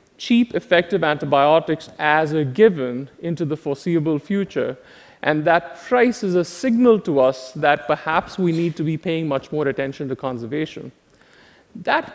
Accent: Indian